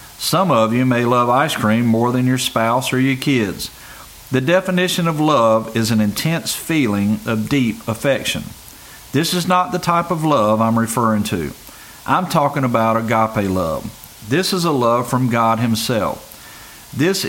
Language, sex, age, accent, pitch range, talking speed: English, male, 50-69, American, 110-145 Hz, 165 wpm